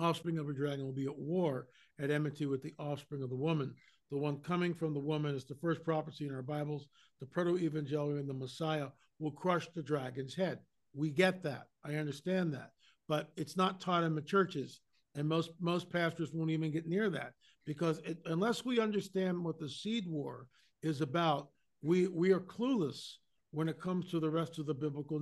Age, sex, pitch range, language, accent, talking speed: 50-69, male, 150-185 Hz, English, American, 200 wpm